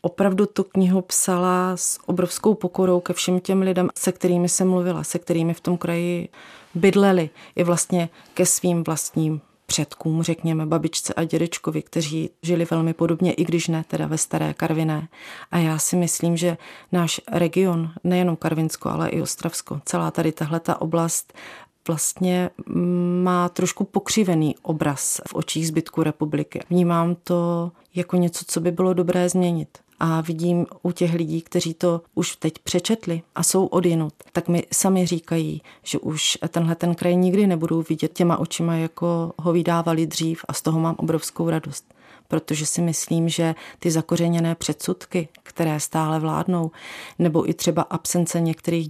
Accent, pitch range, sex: native, 165-180 Hz, female